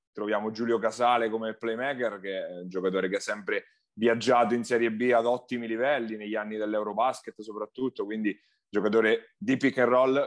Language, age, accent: Italian, 30-49, native